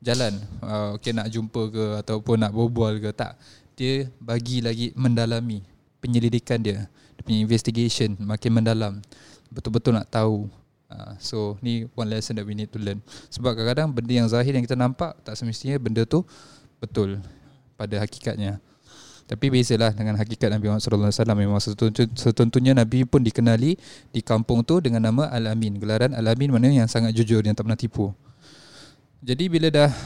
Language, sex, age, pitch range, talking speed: Malay, male, 20-39, 110-130 Hz, 160 wpm